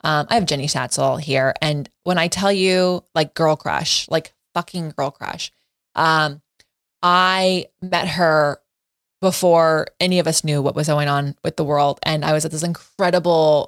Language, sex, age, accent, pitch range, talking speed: English, female, 20-39, American, 150-185 Hz, 175 wpm